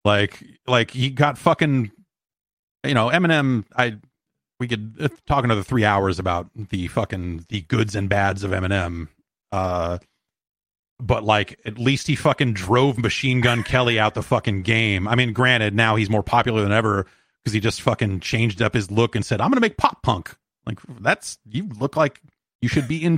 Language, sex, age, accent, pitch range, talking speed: English, male, 30-49, American, 95-125 Hz, 190 wpm